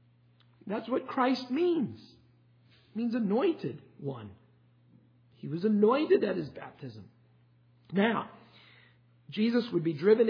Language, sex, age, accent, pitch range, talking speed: English, male, 50-69, American, 160-215 Hz, 110 wpm